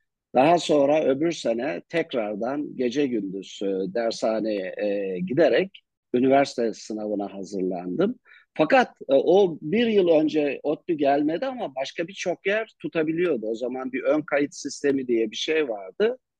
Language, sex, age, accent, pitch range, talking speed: Turkish, male, 50-69, native, 110-170 Hz, 125 wpm